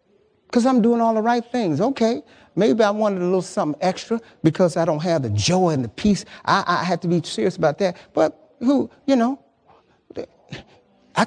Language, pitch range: English, 145-230 Hz